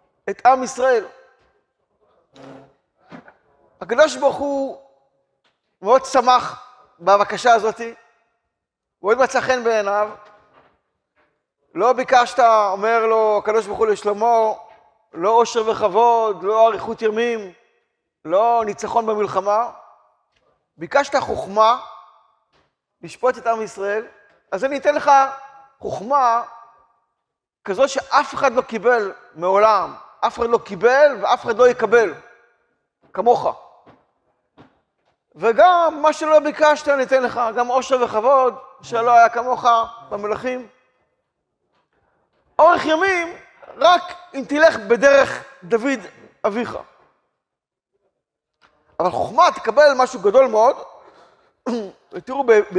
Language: Hebrew